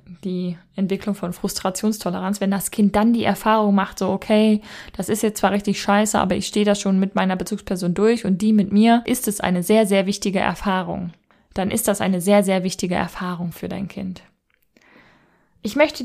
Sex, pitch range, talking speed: female, 195-220 Hz, 195 wpm